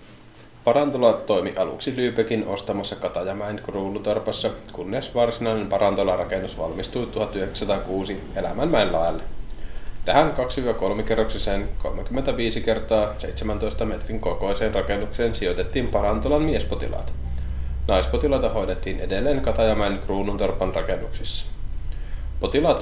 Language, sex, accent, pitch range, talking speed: Finnish, male, native, 95-120 Hz, 85 wpm